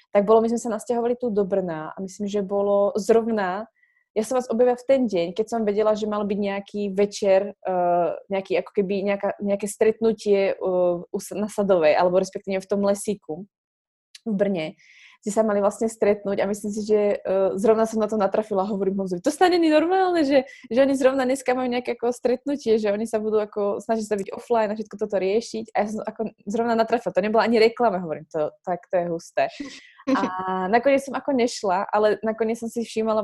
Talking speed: 200 wpm